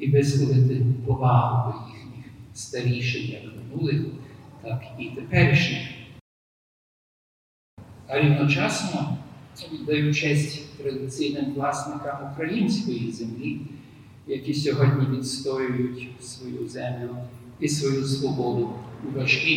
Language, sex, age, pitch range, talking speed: Ukrainian, male, 50-69, 120-140 Hz, 90 wpm